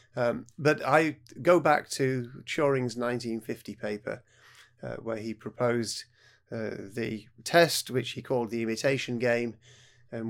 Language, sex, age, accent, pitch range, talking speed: English, male, 30-49, British, 110-125 Hz, 135 wpm